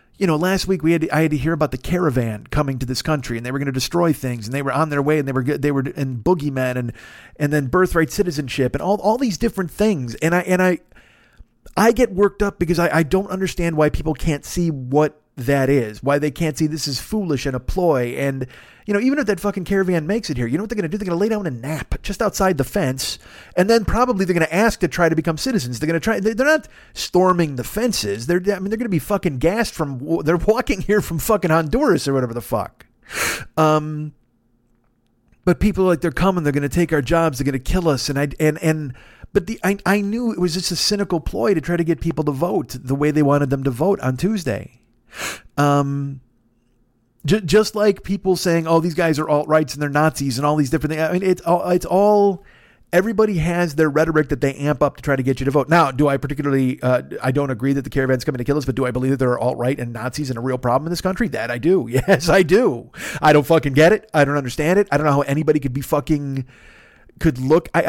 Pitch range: 140-185 Hz